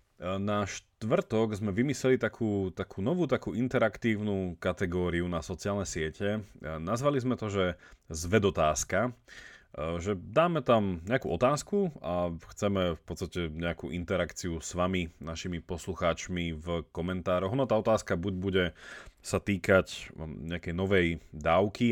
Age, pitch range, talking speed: 30-49, 85-105 Hz, 125 wpm